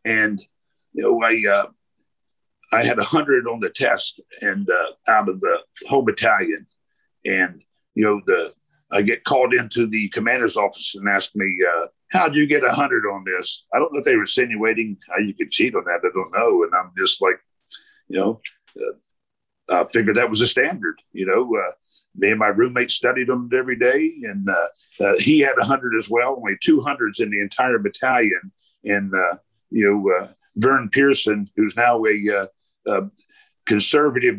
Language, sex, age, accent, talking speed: English, male, 50-69, American, 195 wpm